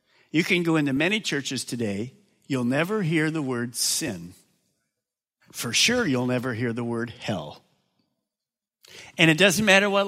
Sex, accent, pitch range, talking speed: male, American, 120-195 Hz, 155 wpm